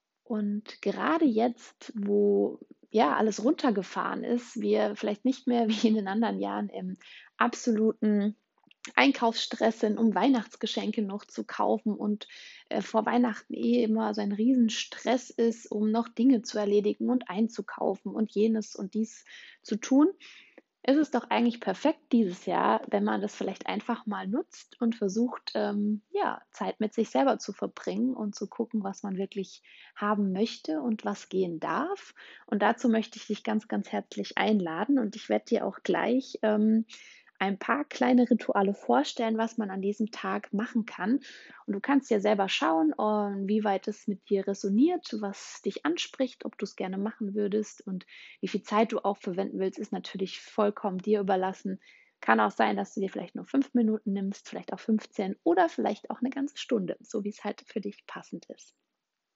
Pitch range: 205-240 Hz